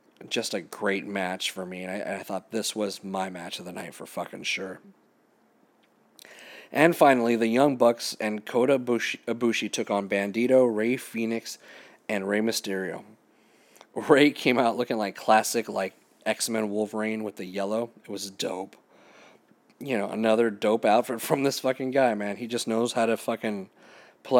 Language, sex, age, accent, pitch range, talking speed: English, male, 30-49, American, 100-115 Hz, 165 wpm